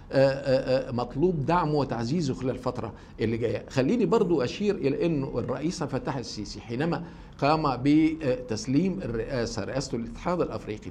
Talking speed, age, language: 120 wpm, 50-69, Arabic